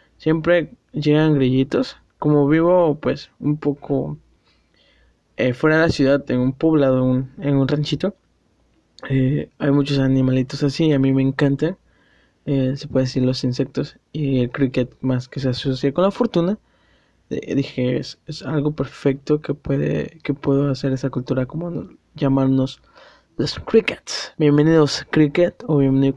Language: Spanish